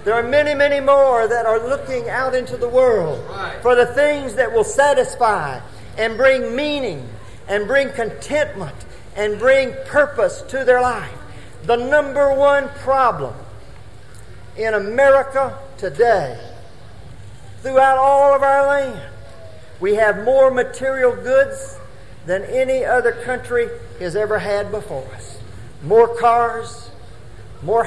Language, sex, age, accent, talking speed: English, male, 50-69, American, 125 wpm